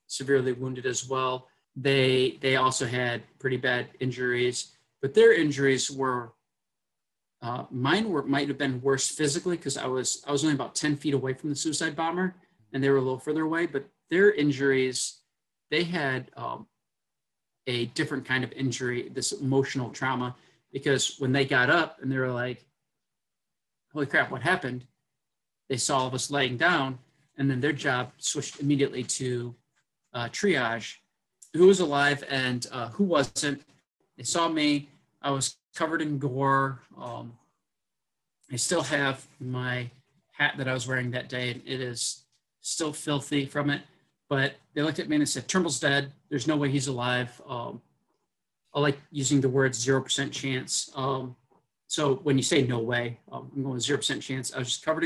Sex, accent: male, American